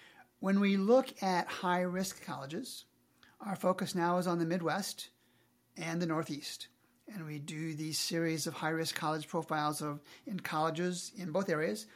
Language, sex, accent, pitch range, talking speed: English, male, American, 155-195 Hz, 155 wpm